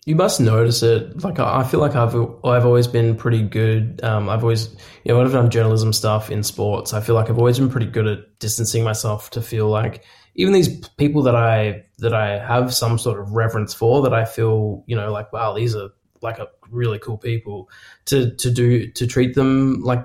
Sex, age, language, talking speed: male, 20-39, English, 220 wpm